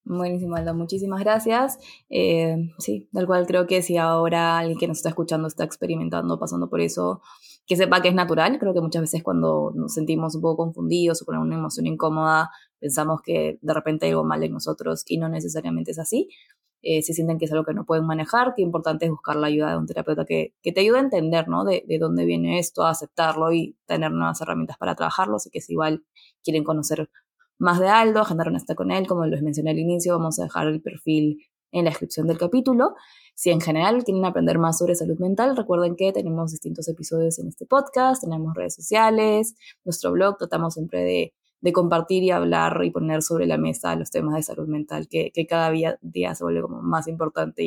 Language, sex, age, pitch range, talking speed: Spanish, female, 20-39, 145-180 Hz, 220 wpm